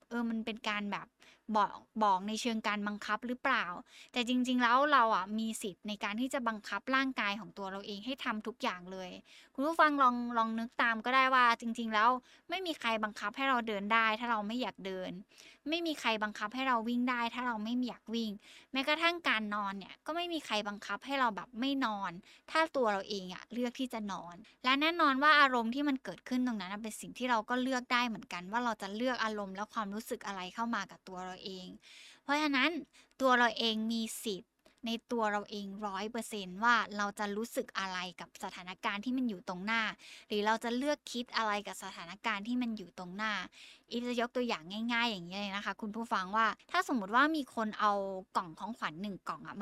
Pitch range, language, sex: 205-255 Hz, Thai, female